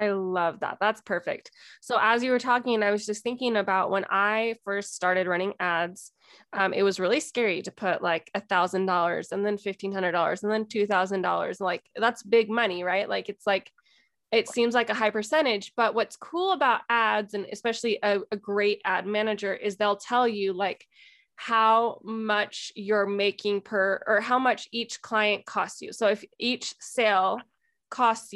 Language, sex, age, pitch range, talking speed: English, female, 20-39, 200-245 Hz, 180 wpm